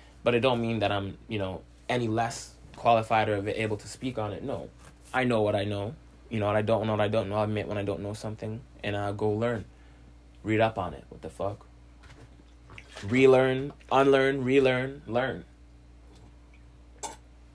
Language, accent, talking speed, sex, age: English, American, 190 wpm, male, 20-39